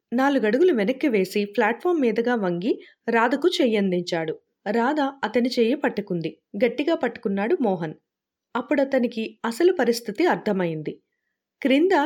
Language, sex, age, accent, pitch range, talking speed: Telugu, female, 30-49, native, 205-275 Hz, 105 wpm